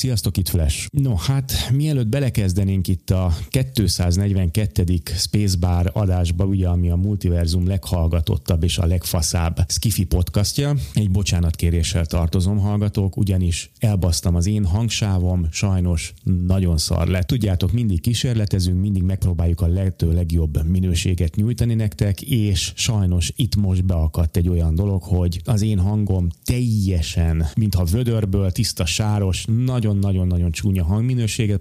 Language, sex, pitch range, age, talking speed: Hungarian, male, 90-110 Hz, 30-49, 125 wpm